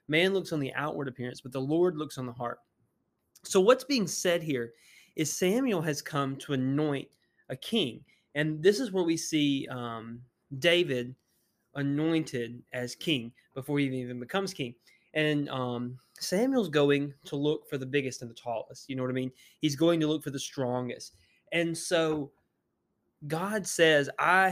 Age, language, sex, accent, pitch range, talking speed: 20-39, English, male, American, 130-165 Hz, 175 wpm